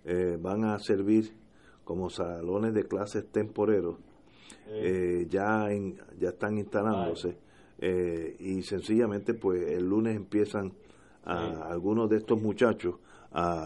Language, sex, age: Spanish, male, 50-69